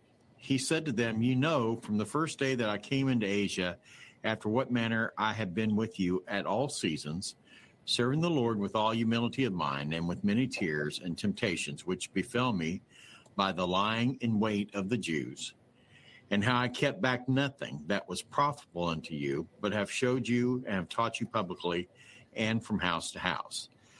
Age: 50-69